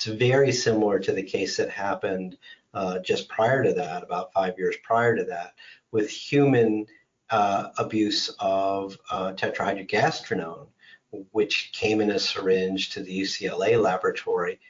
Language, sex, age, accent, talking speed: English, male, 40-59, American, 145 wpm